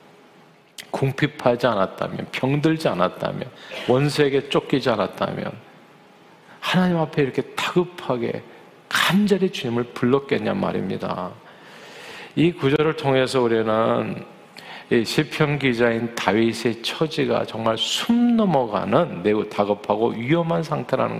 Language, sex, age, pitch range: Korean, male, 40-59, 120-160 Hz